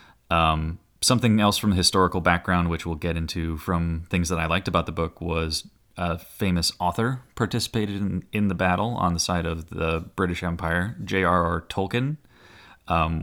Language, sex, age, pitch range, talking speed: English, male, 30-49, 85-100 Hz, 170 wpm